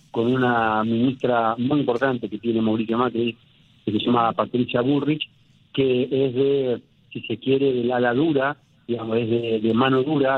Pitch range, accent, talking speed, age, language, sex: 115-135 Hz, Argentinian, 170 wpm, 40-59, Spanish, male